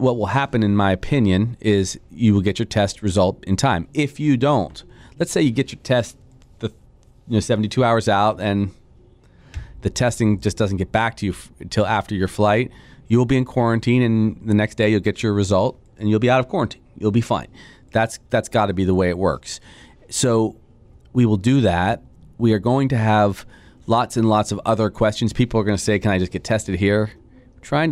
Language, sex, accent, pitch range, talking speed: English, male, American, 100-120 Hz, 215 wpm